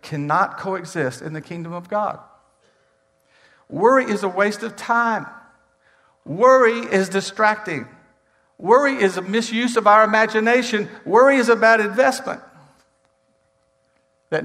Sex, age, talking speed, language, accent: male, 60-79, 120 wpm, English, American